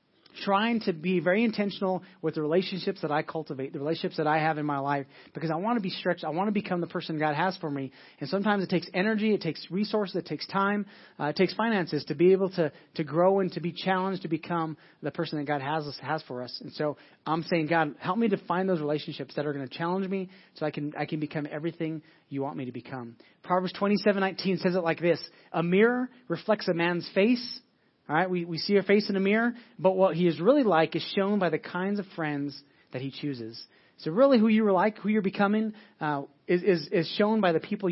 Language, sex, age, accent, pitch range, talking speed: English, male, 30-49, American, 155-195 Hz, 245 wpm